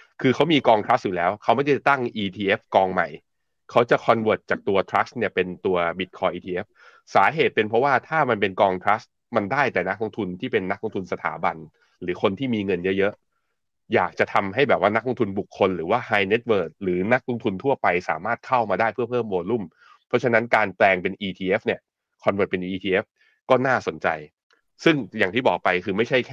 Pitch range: 95-120 Hz